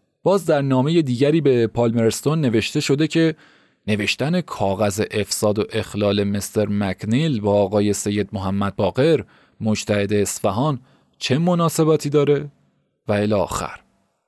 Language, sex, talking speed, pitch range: Persian, male, 120 wpm, 110-150 Hz